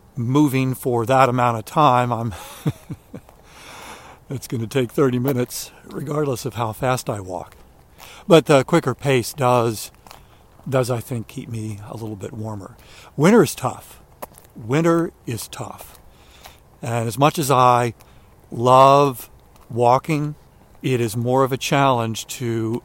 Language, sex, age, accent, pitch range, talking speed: English, male, 60-79, American, 115-140 Hz, 140 wpm